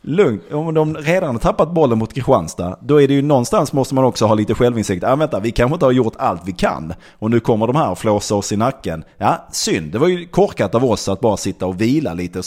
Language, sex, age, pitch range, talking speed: Swedish, male, 30-49, 90-125 Hz, 270 wpm